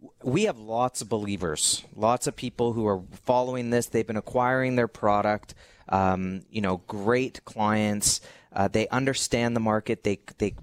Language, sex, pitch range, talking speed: English, male, 105-140 Hz, 165 wpm